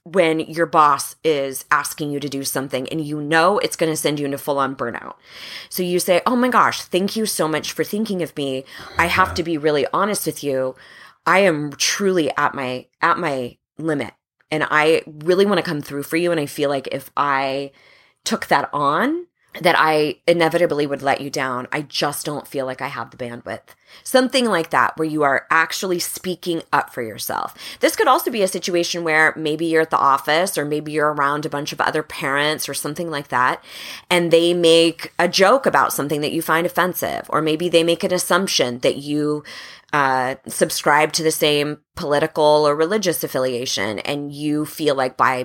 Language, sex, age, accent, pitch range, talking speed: English, female, 20-39, American, 140-170 Hz, 205 wpm